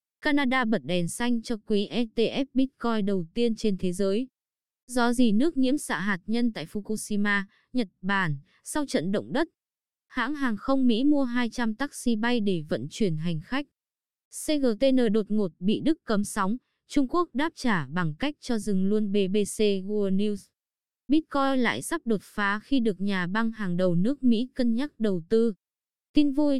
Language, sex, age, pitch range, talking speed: Vietnamese, female, 20-39, 200-255 Hz, 180 wpm